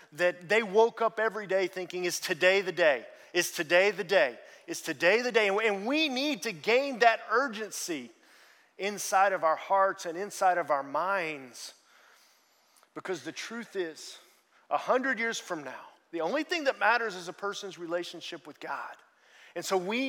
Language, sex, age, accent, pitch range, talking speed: English, male, 40-59, American, 160-205 Hz, 175 wpm